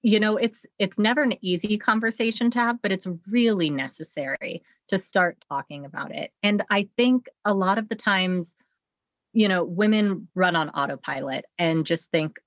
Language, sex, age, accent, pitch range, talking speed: English, female, 30-49, American, 165-210 Hz, 175 wpm